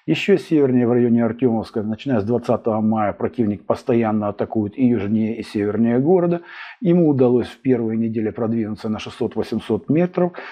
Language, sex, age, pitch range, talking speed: Russian, male, 50-69, 110-135 Hz, 150 wpm